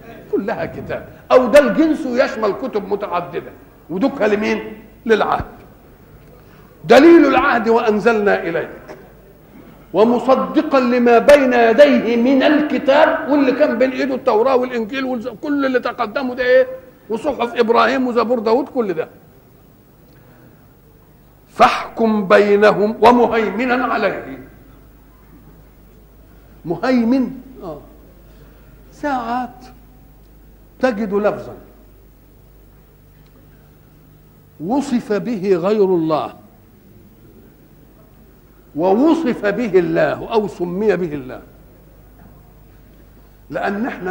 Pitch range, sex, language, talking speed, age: 205-260 Hz, male, Arabic, 80 wpm, 50-69